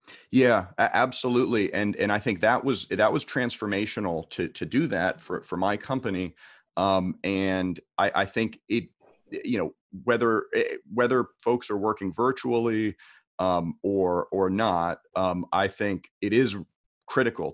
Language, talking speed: English, 150 wpm